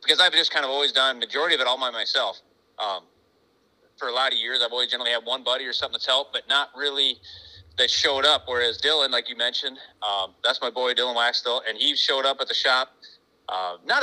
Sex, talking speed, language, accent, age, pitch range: male, 240 wpm, English, American, 30-49, 115-140 Hz